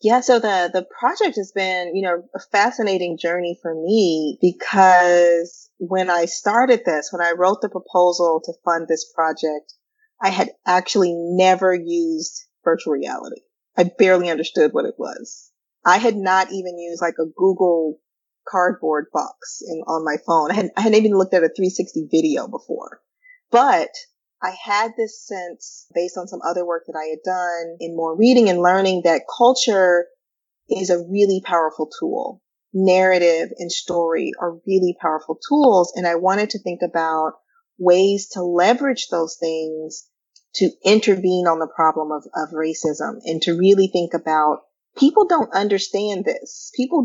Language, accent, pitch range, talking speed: English, American, 165-205 Hz, 165 wpm